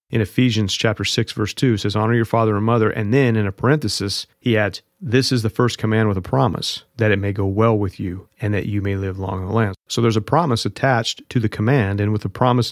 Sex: male